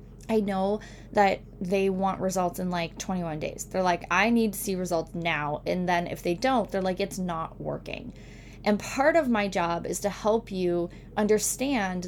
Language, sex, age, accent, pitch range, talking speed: English, female, 10-29, American, 180-235 Hz, 190 wpm